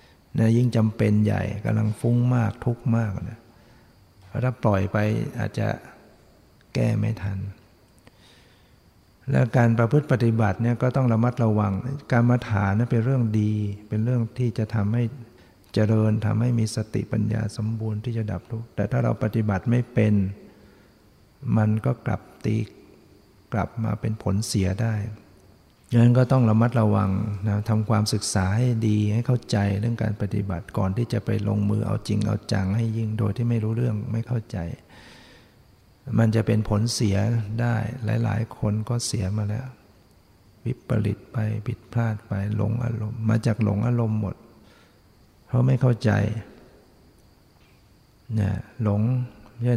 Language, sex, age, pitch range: Thai, male, 60-79, 105-115 Hz